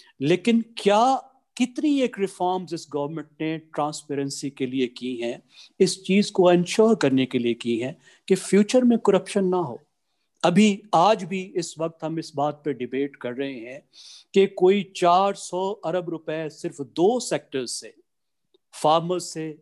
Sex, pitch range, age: male, 140-180 Hz, 50-69